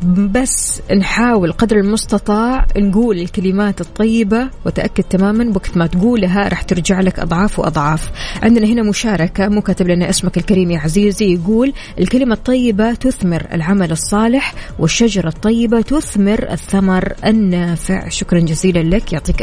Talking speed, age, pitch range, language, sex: 125 wpm, 20-39, 185-225 Hz, Arabic, female